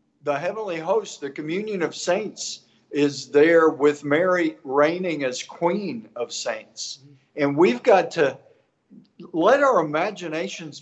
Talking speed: 130 wpm